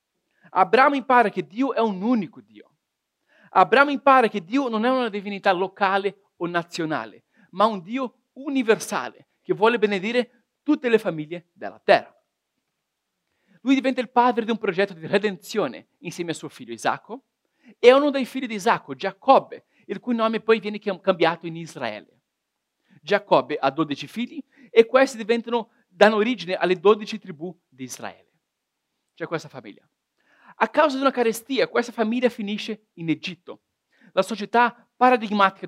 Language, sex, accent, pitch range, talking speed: Italian, male, native, 190-250 Hz, 150 wpm